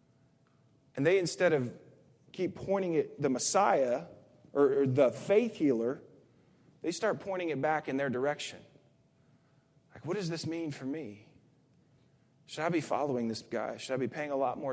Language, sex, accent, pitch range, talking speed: English, male, American, 135-180 Hz, 170 wpm